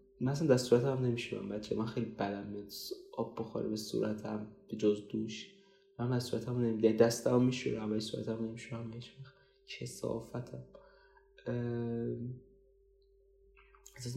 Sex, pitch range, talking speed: male, 115-140 Hz, 125 wpm